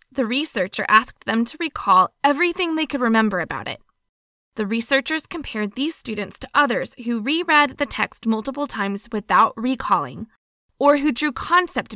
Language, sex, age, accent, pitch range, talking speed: English, female, 20-39, American, 215-285 Hz, 155 wpm